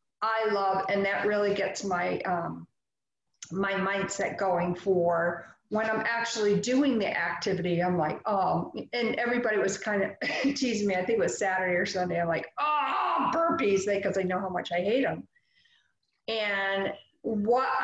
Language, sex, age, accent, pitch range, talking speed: English, female, 50-69, American, 185-240 Hz, 165 wpm